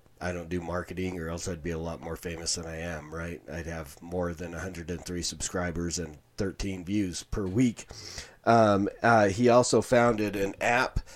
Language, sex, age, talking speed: English, male, 30-49, 185 wpm